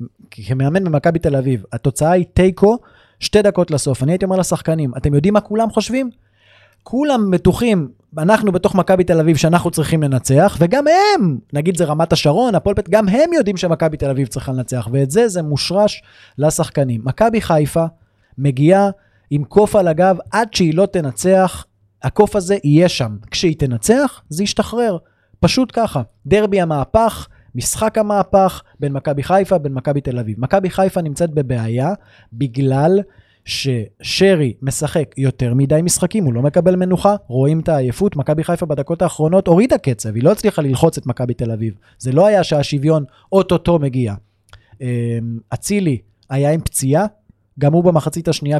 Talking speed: 150 wpm